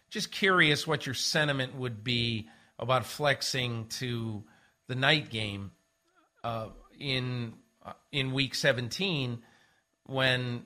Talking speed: 115 wpm